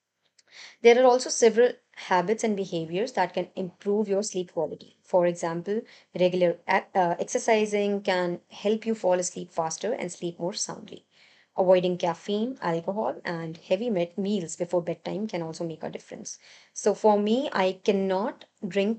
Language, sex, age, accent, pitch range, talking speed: English, male, 20-39, Indian, 175-225 Hz, 150 wpm